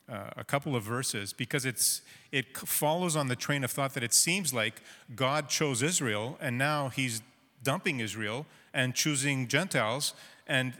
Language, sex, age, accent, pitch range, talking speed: English, male, 40-59, American, 120-150 Hz, 170 wpm